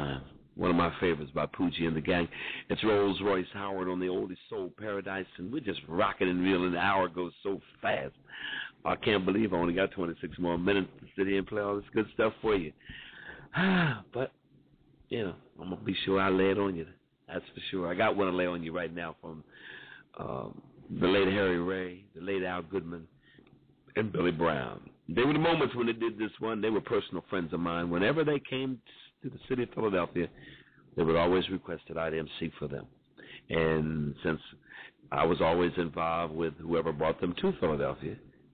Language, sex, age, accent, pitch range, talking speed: English, male, 50-69, American, 85-100 Hz, 205 wpm